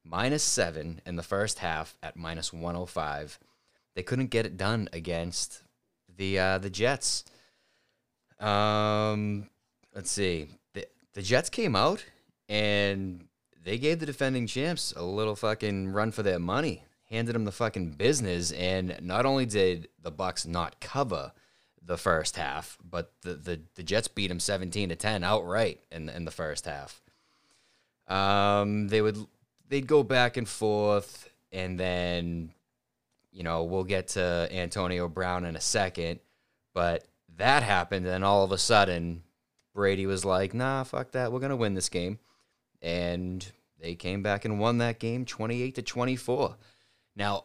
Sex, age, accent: male, 20-39, American